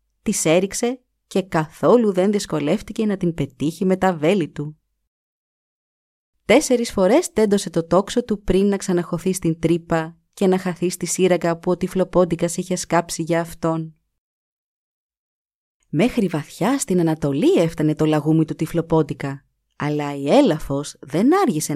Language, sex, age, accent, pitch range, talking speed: Greek, female, 30-49, native, 155-215 Hz, 140 wpm